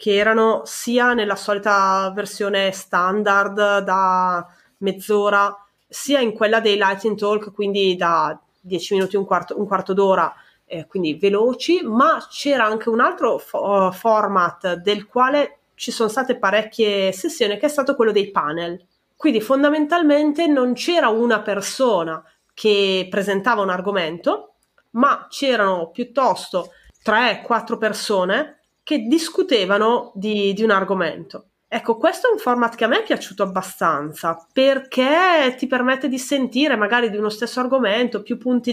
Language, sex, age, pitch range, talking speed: Italian, female, 30-49, 195-255 Hz, 145 wpm